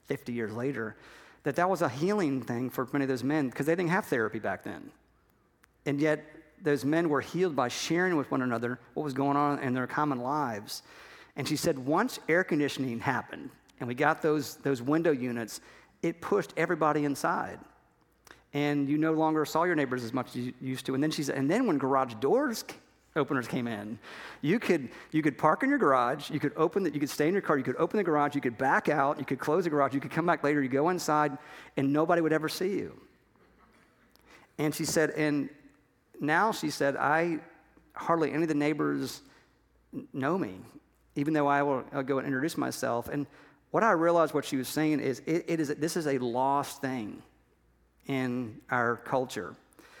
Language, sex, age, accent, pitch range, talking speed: English, male, 50-69, American, 130-155 Hz, 210 wpm